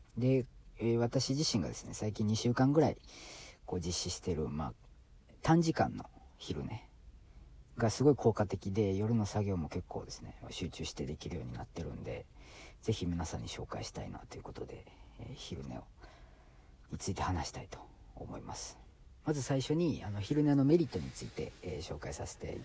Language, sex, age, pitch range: Japanese, female, 40-59, 85-120 Hz